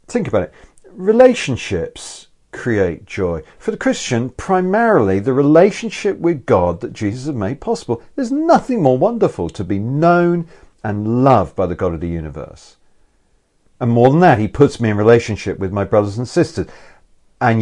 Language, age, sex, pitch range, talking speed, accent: English, 40-59, male, 95-140 Hz, 165 wpm, British